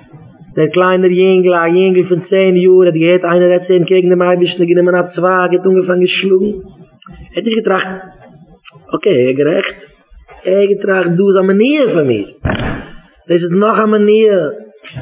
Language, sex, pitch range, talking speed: English, male, 180-230 Hz, 200 wpm